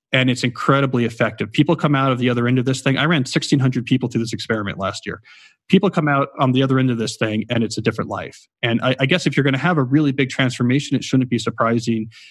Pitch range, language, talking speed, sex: 120-140 Hz, English, 270 wpm, male